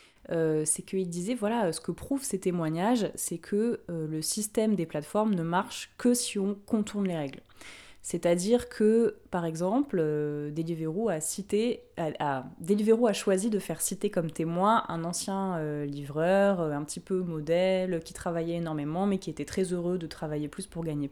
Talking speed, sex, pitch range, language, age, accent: 180 wpm, female, 160-205 Hz, French, 20-39, French